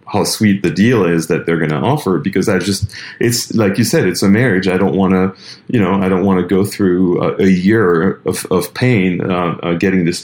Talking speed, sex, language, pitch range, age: 245 wpm, male, English, 85-100 Hz, 40-59